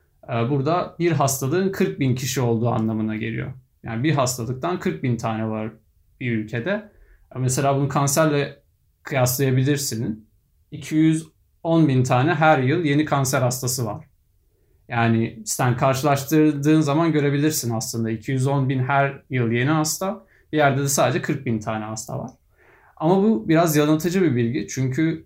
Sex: male